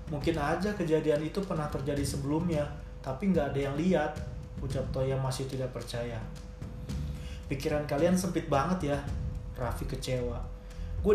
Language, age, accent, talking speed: Indonesian, 30-49, native, 135 wpm